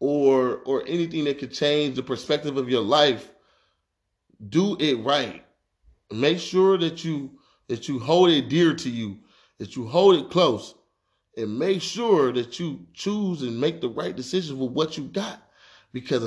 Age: 30-49